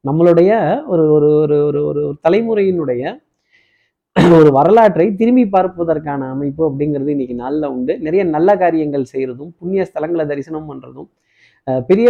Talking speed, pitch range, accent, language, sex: 180 wpm, 140-180 Hz, native, Tamil, male